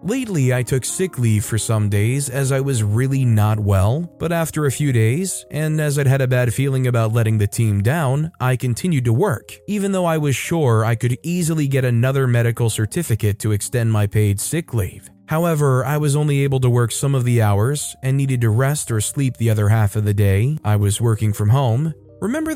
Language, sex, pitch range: English, male, 115-155 Hz